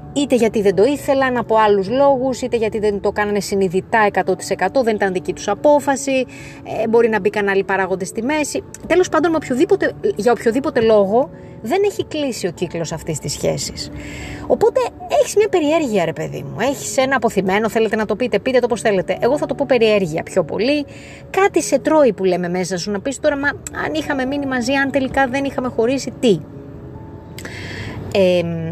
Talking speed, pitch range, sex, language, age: 190 wpm, 180-245 Hz, female, Greek, 20-39